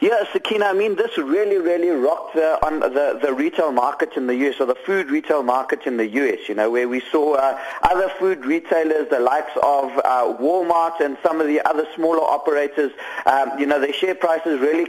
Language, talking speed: English, 205 wpm